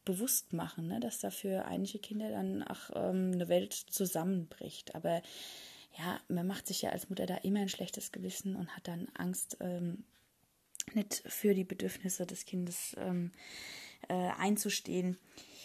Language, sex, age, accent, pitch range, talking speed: German, female, 20-39, German, 170-195 Hz, 155 wpm